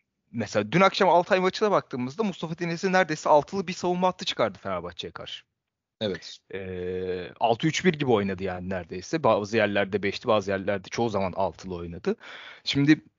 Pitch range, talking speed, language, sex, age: 105-155 Hz, 155 wpm, Turkish, male, 30-49